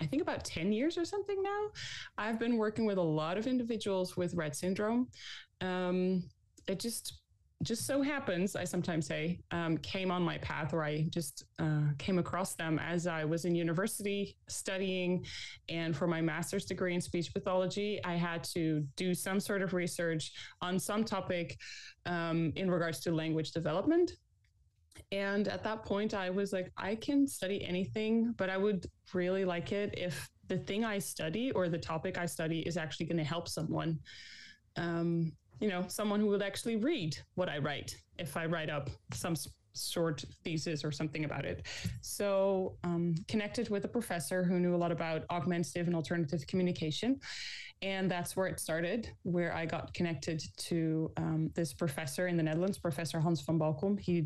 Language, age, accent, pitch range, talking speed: English, 20-39, American, 160-190 Hz, 180 wpm